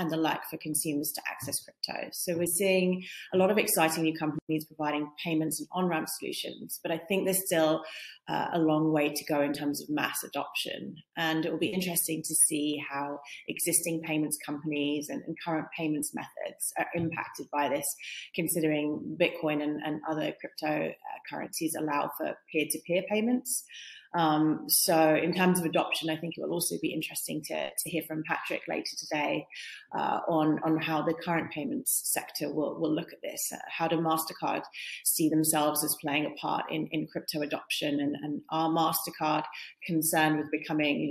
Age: 30-49